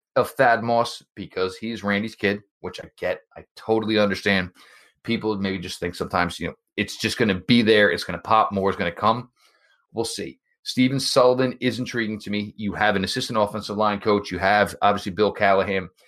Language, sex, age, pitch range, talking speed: English, male, 30-49, 100-115 Hz, 205 wpm